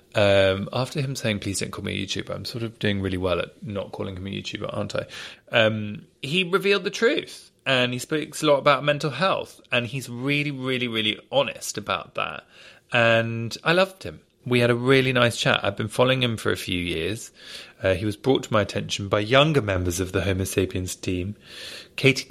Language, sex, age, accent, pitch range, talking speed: English, male, 30-49, British, 100-145 Hz, 210 wpm